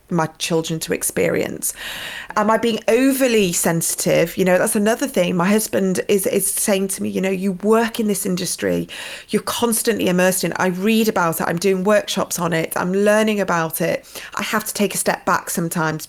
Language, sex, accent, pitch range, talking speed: English, female, British, 170-205 Hz, 200 wpm